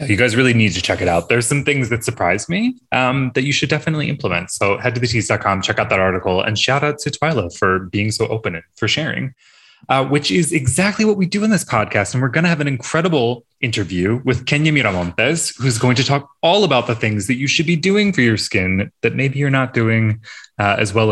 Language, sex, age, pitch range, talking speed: English, male, 20-39, 105-155 Hz, 240 wpm